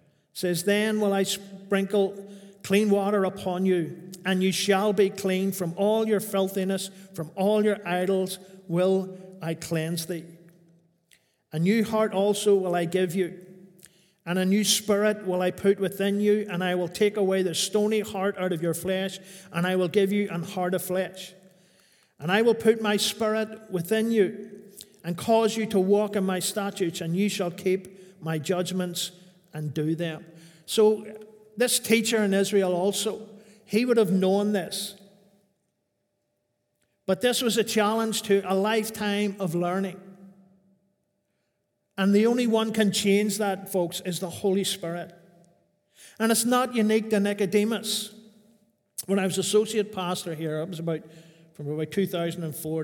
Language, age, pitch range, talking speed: English, 50-69, 175-205 Hz, 160 wpm